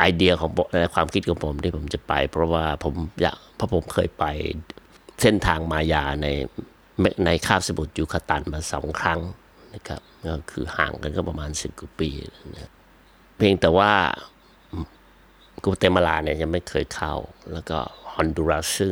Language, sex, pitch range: Thai, male, 80-95 Hz